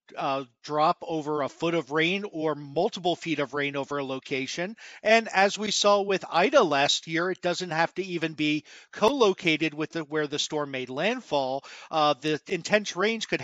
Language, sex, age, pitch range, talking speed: English, male, 50-69, 150-200 Hz, 185 wpm